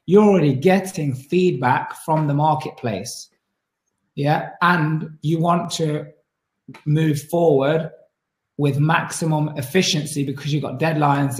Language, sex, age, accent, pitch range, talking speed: English, male, 20-39, British, 135-160 Hz, 110 wpm